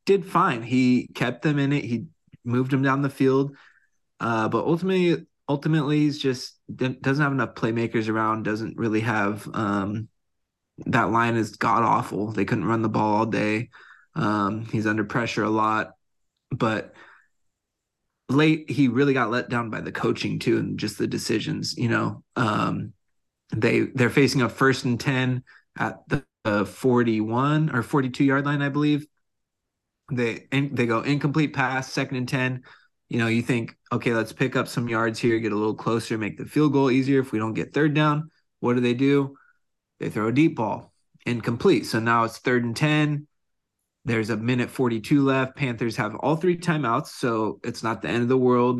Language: English